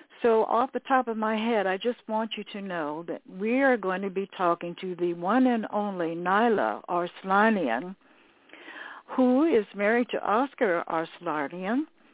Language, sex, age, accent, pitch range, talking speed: English, female, 60-79, American, 175-230 Hz, 165 wpm